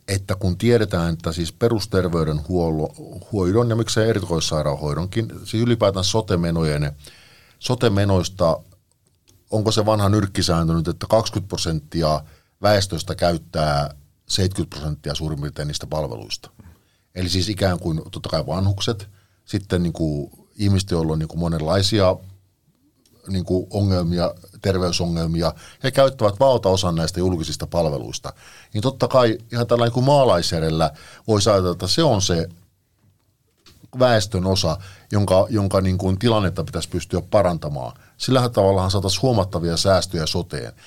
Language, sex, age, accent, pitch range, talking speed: Finnish, male, 50-69, native, 85-110 Hz, 120 wpm